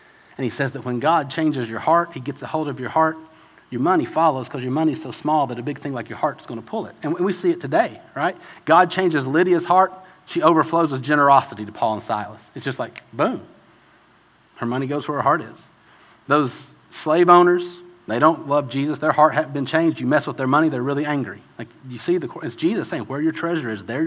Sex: male